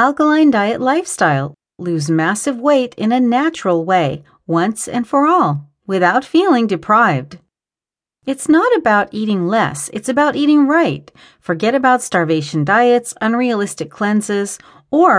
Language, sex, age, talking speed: English, female, 40-59, 130 wpm